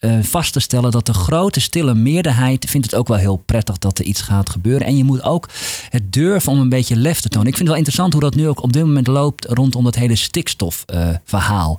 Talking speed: 250 wpm